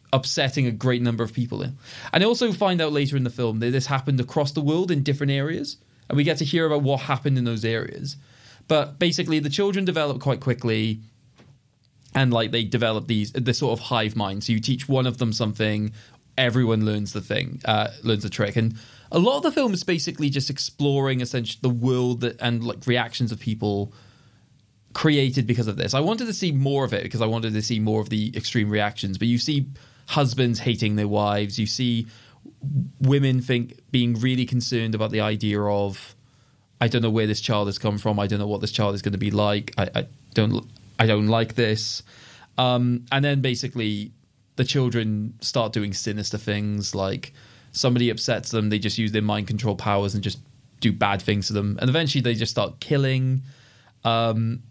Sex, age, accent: male, 20-39, British